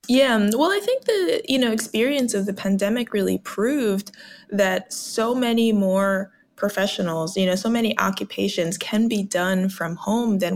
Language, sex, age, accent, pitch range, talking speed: English, female, 20-39, American, 185-245 Hz, 165 wpm